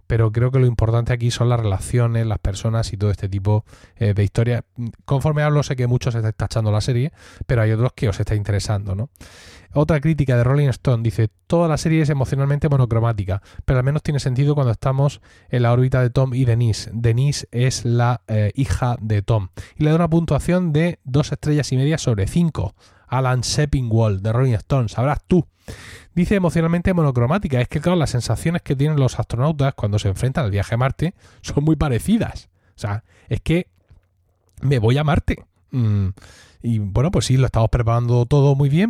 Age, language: 20-39, Spanish